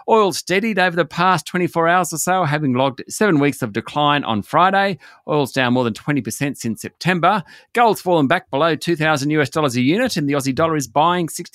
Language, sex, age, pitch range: English, male, 40-59, 125-165 Hz